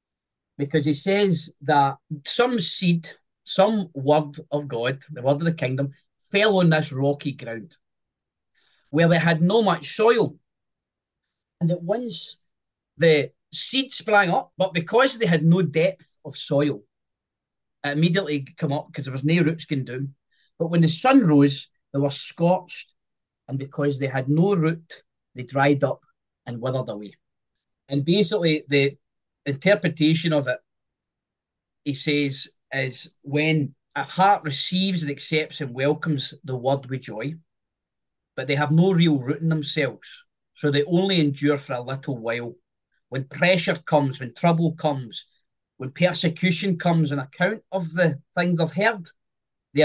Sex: male